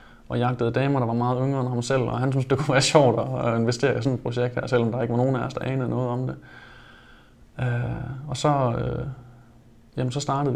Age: 20-39